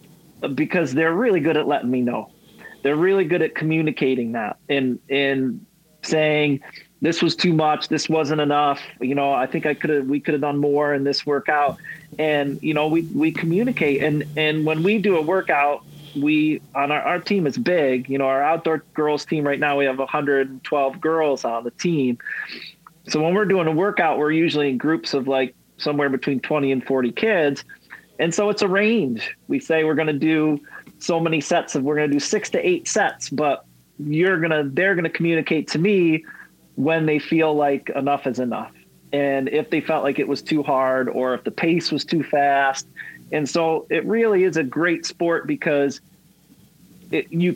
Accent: American